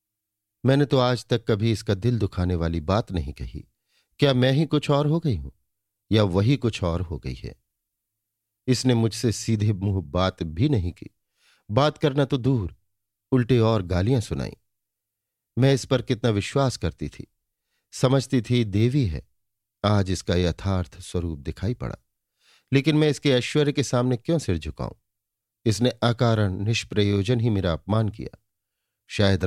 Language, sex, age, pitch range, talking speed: Hindi, male, 50-69, 95-125 Hz, 155 wpm